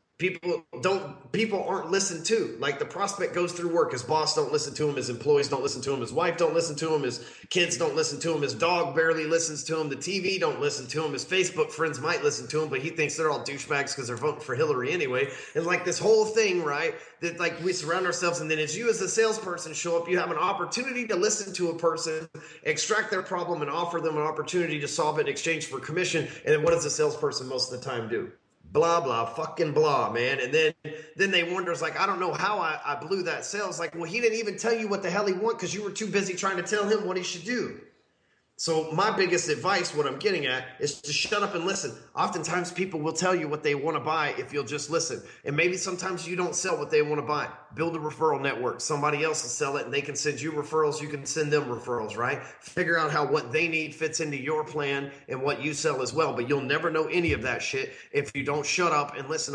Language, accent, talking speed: English, American, 260 wpm